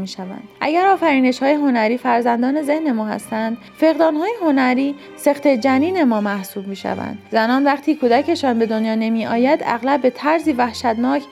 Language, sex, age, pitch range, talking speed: Persian, female, 30-49, 225-285 Hz, 155 wpm